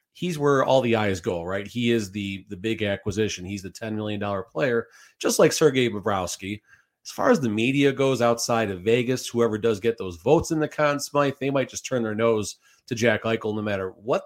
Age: 40-59